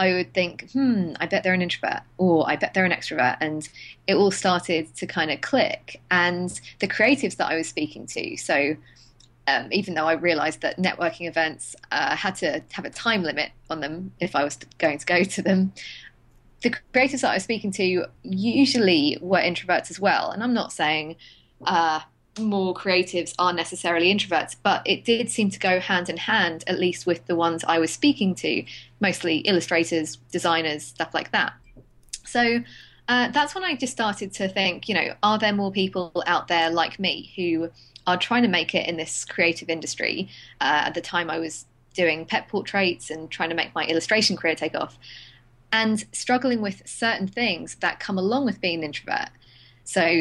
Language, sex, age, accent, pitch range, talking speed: English, female, 20-39, British, 160-200 Hz, 195 wpm